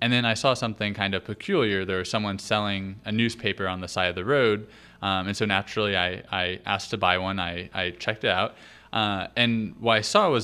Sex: male